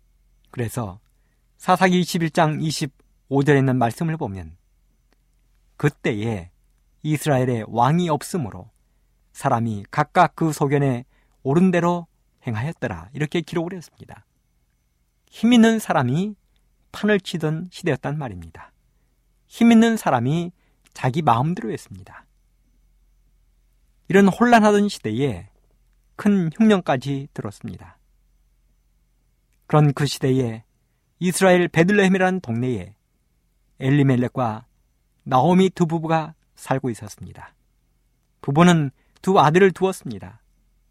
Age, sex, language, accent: 50-69, male, Korean, native